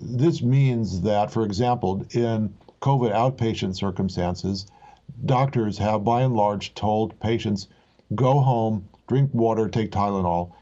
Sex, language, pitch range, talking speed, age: male, English, 105-130 Hz, 125 wpm, 50-69